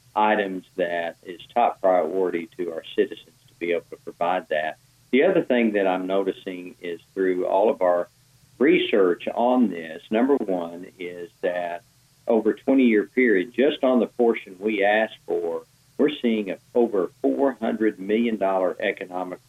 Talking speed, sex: 150 wpm, male